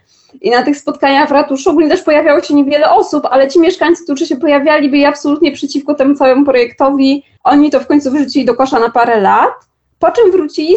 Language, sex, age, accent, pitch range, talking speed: Polish, female, 20-39, native, 230-300 Hz, 205 wpm